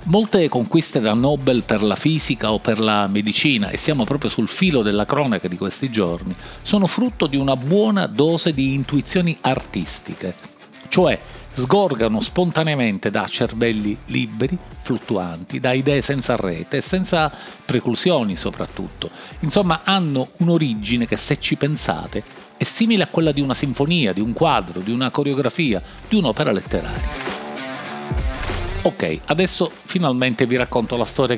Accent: native